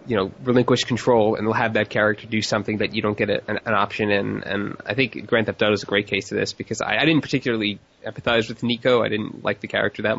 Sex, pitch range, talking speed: male, 105-120 Hz, 265 wpm